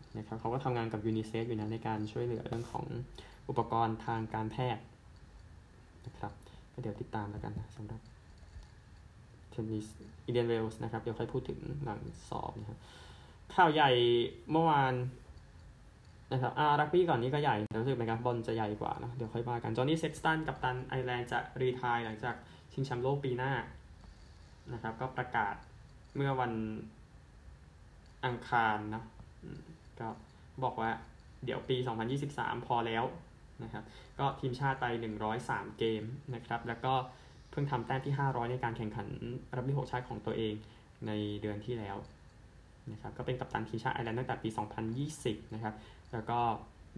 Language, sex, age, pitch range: Thai, male, 20-39, 110-125 Hz